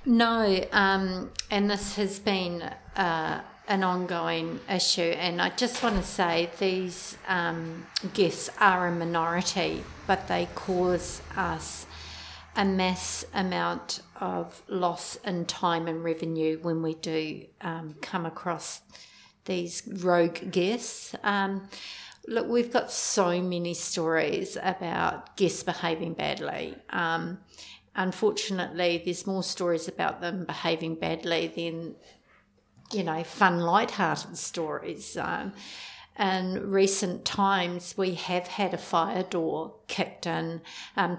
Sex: female